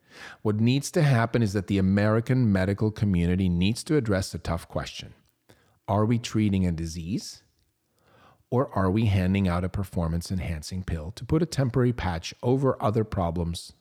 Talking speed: 165 wpm